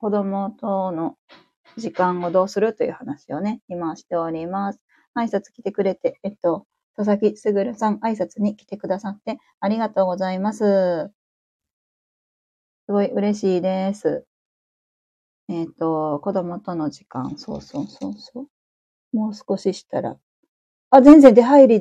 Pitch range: 175-215 Hz